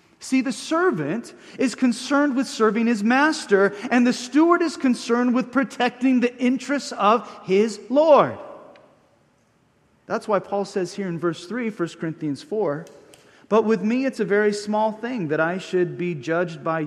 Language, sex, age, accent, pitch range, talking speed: English, male, 40-59, American, 160-225 Hz, 165 wpm